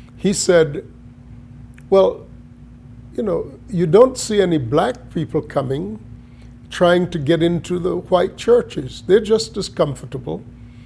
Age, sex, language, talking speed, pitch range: 50-69, male, English, 125 wpm, 125-180 Hz